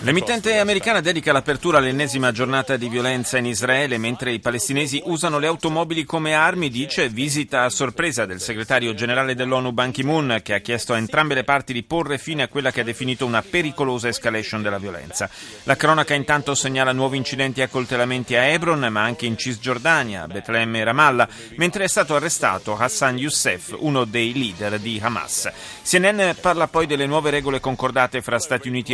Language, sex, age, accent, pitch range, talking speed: Italian, male, 30-49, native, 115-150 Hz, 180 wpm